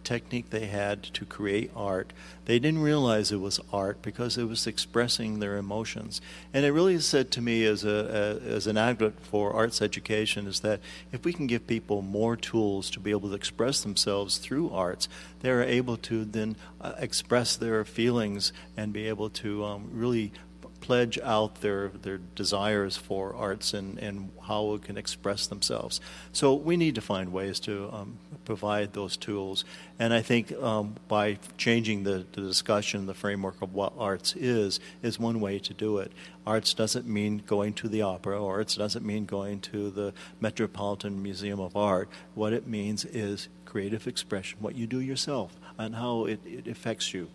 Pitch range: 100-115 Hz